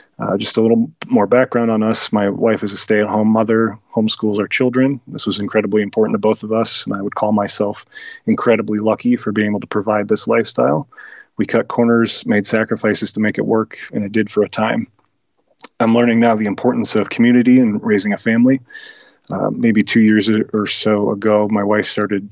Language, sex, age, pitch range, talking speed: English, male, 30-49, 105-115 Hz, 200 wpm